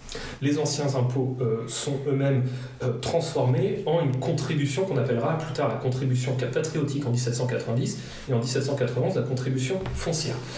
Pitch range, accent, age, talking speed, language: 130-165 Hz, French, 30-49, 150 wpm, French